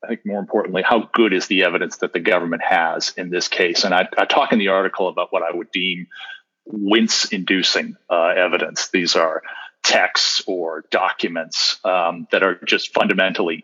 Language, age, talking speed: English, 40-59, 180 wpm